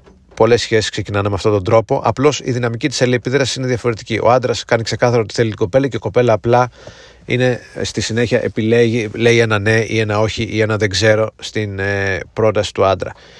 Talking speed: 200 wpm